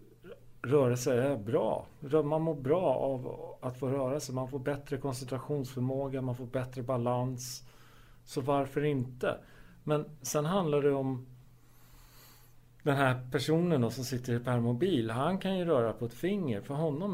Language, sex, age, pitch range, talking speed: Swedish, male, 40-59, 120-145 Hz, 155 wpm